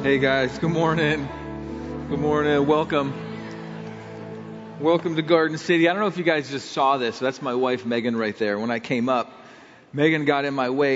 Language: English